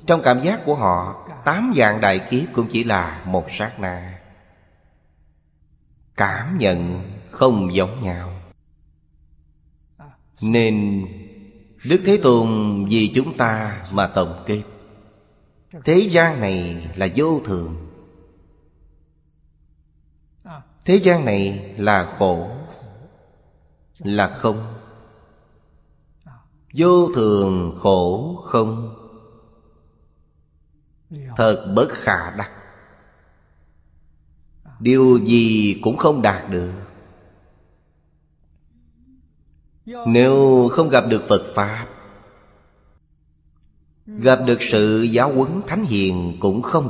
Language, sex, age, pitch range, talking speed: Vietnamese, male, 20-39, 80-115 Hz, 90 wpm